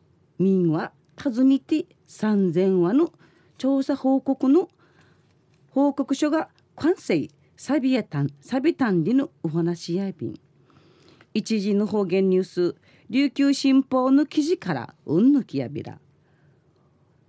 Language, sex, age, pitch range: Japanese, female, 40-59, 150-205 Hz